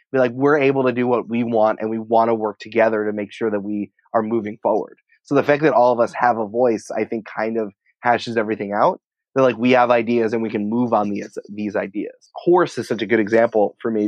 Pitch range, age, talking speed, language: 105-125 Hz, 20-39, 260 wpm, English